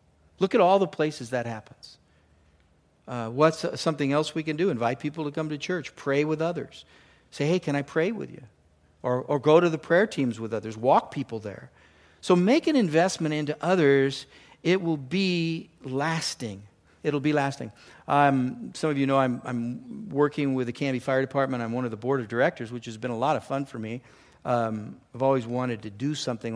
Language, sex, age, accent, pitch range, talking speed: English, male, 50-69, American, 120-145 Hz, 205 wpm